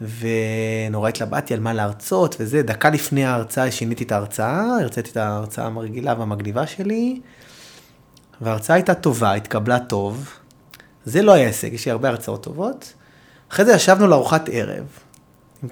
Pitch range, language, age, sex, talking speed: 110-145 Hz, Hebrew, 30-49, male, 140 wpm